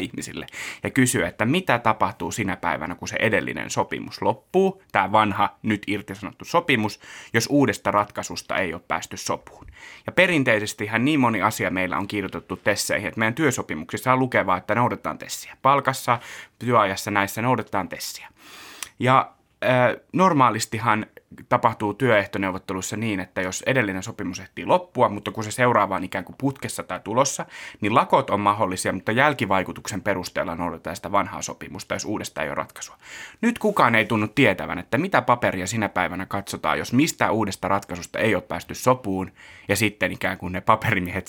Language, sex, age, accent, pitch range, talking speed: Finnish, male, 30-49, native, 95-120 Hz, 160 wpm